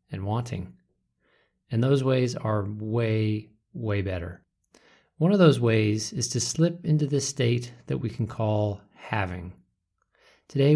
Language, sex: English, male